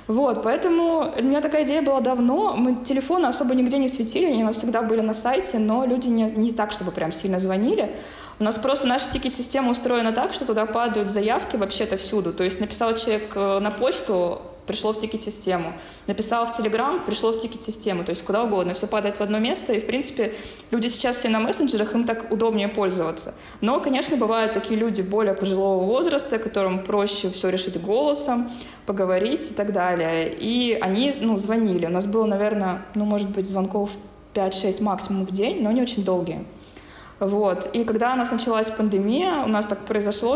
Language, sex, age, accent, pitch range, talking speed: Russian, female, 20-39, native, 205-250 Hz, 185 wpm